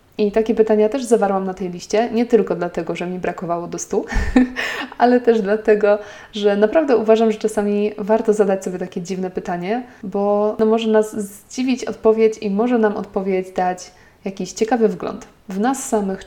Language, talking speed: Polish, 170 wpm